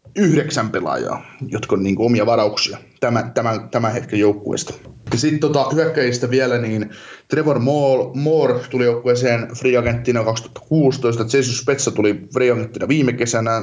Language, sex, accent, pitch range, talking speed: Finnish, male, native, 110-130 Hz, 145 wpm